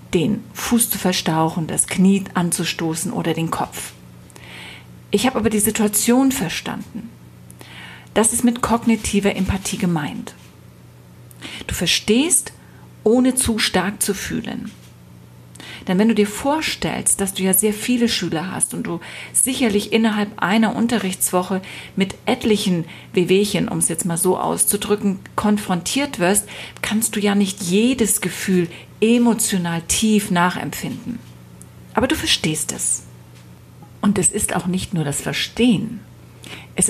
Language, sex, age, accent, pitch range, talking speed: German, female, 40-59, German, 160-215 Hz, 130 wpm